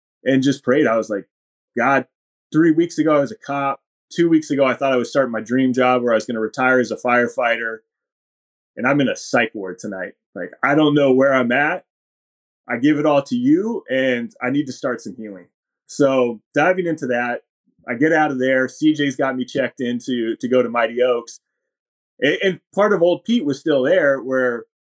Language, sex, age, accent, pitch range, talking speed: English, male, 20-39, American, 120-155 Hz, 220 wpm